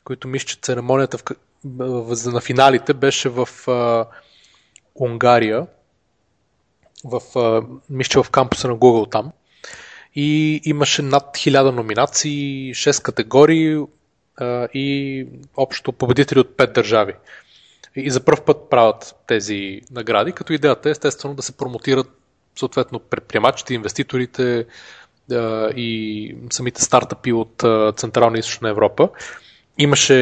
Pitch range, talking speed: 120-140 Hz, 120 wpm